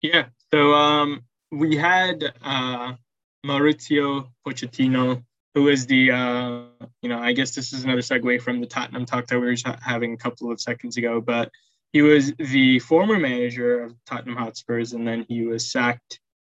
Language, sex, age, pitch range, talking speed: English, male, 10-29, 120-130 Hz, 170 wpm